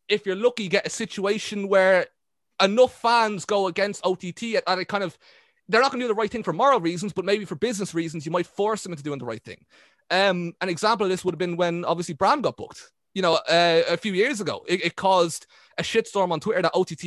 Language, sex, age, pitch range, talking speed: English, male, 20-39, 165-205 Hz, 245 wpm